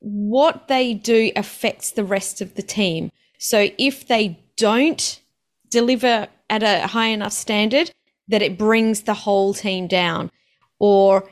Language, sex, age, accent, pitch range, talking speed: English, female, 30-49, Australian, 195-235 Hz, 145 wpm